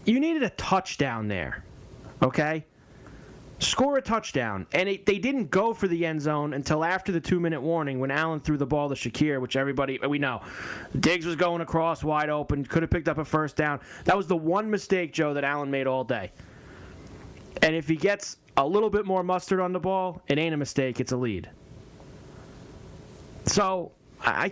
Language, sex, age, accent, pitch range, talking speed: English, male, 30-49, American, 135-185 Hz, 190 wpm